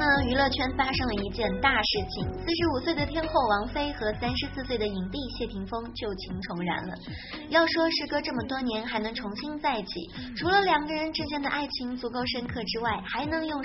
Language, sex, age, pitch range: Japanese, male, 20-39, 220-315 Hz